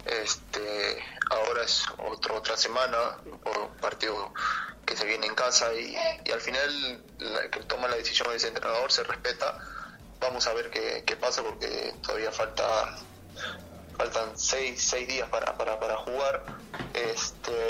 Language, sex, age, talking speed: Spanish, male, 30-49, 150 wpm